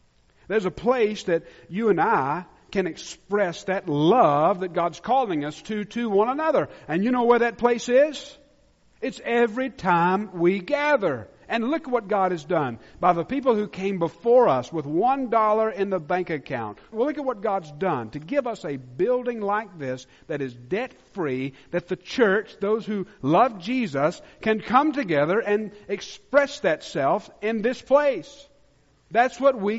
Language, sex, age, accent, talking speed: English, male, 50-69, American, 175 wpm